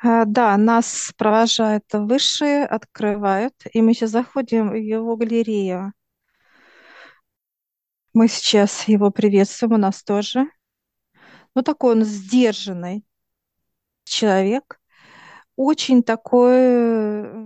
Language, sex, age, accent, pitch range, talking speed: Russian, female, 40-59, native, 205-240 Hz, 90 wpm